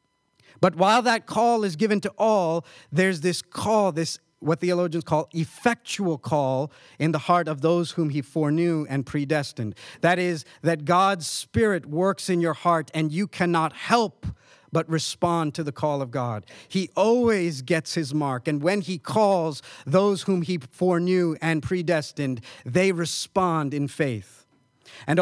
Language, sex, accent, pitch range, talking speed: English, male, American, 150-190 Hz, 160 wpm